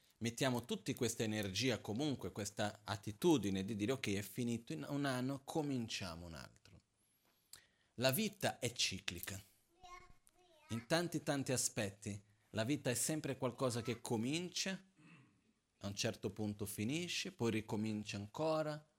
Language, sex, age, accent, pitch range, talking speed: Italian, male, 40-59, native, 100-125 Hz, 125 wpm